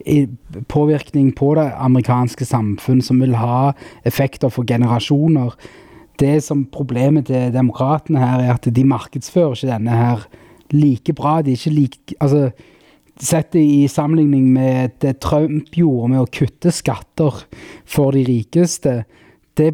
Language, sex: English, male